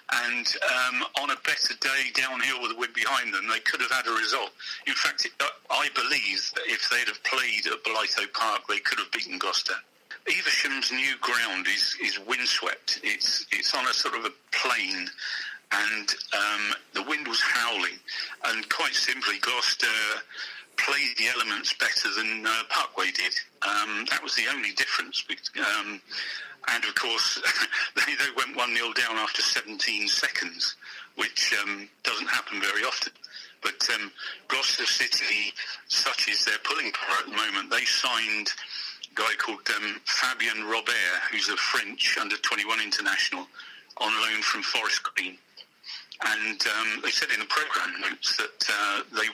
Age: 50-69